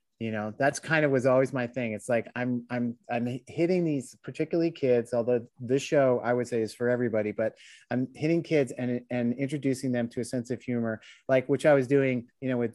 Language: English